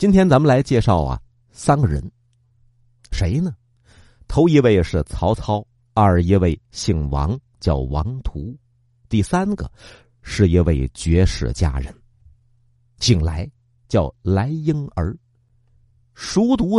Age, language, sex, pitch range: 50-69, Chinese, male, 95-125 Hz